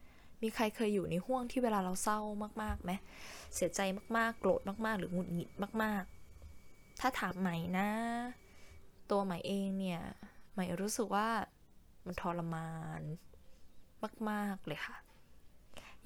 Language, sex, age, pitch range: Thai, female, 10-29, 175-215 Hz